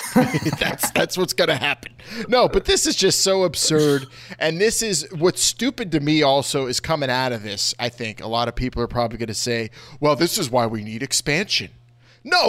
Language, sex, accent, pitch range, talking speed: English, male, American, 120-160 Hz, 215 wpm